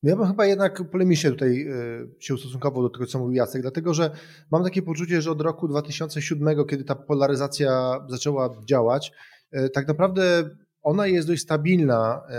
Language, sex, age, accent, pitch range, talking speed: Polish, male, 20-39, native, 130-160 Hz, 165 wpm